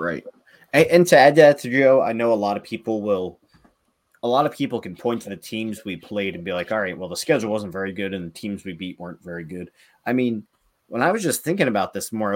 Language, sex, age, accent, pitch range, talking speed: English, male, 30-49, American, 95-120 Hz, 260 wpm